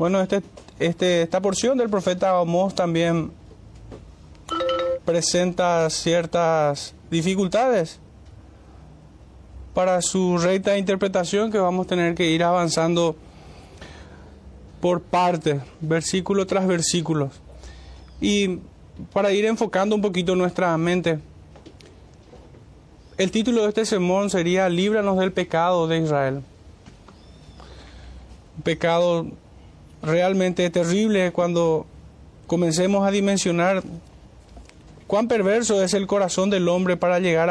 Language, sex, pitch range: Spanish, male, 145-195 Hz